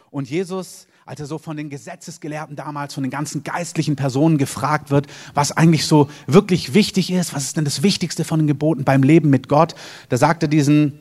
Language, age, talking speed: German, 30-49, 205 wpm